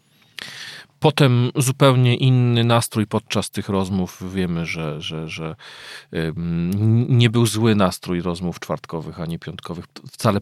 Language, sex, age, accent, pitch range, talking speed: Polish, male, 40-59, native, 95-125 Hz, 120 wpm